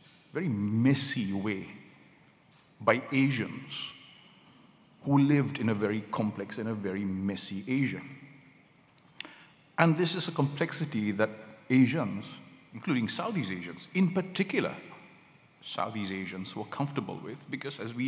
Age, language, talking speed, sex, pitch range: 50-69, English, 120 wpm, male, 100-130 Hz